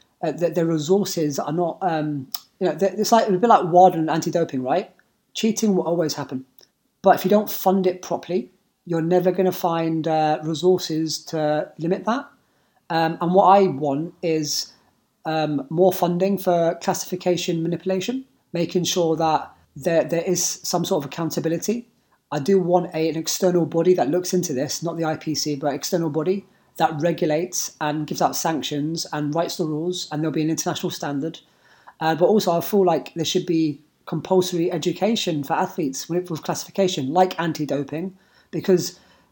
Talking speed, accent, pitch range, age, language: 170 wpm, British, 160-185 Hz, 20-39, English